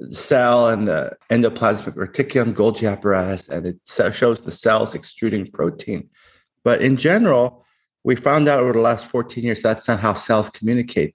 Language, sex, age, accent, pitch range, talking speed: English, male, 30-49, American, 100-125 Hz, 160 wpm